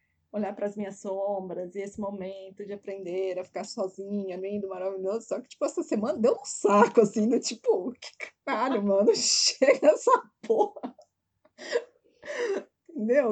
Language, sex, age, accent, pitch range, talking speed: Portuguese, female, 20-39, Brazilian, 200-295 Hz, 150 wpm